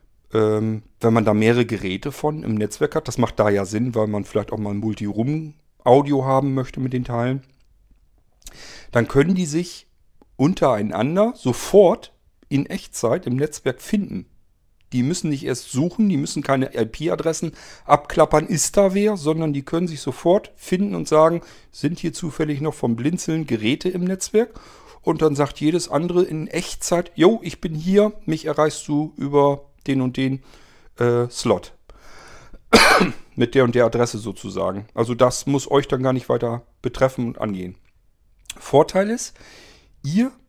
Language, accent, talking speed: German, German, 160 wpm